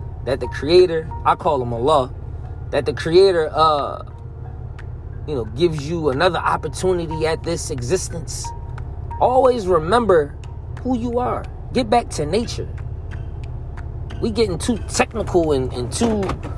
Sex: male